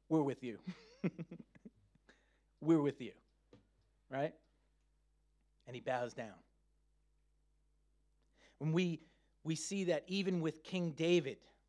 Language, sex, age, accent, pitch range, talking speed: English, male, 30-49, American, 140-175 Hz, 105 wpm